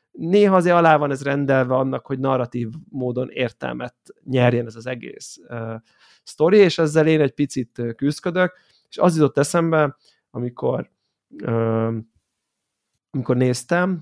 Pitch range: 125-155 Hz